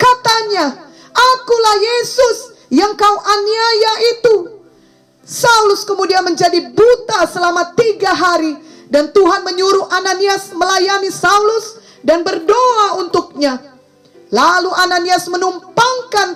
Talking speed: 95 wpm